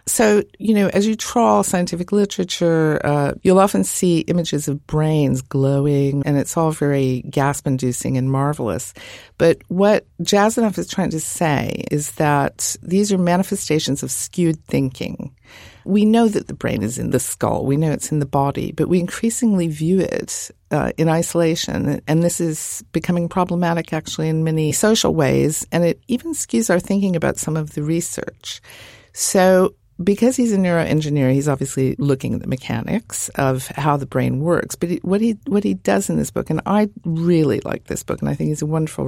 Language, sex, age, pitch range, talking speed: English, female, 50-69, 140-185 Hz, 180 wpm